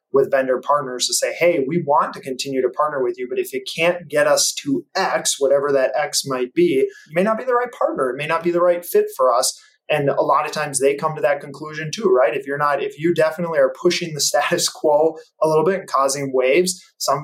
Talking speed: 255 wpm